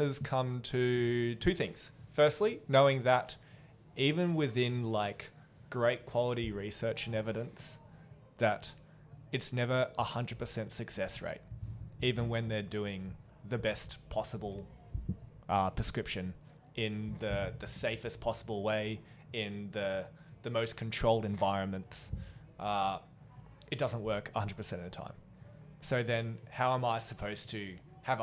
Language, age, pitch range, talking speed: English, 20-39, 105-135 Hz, 125 wpm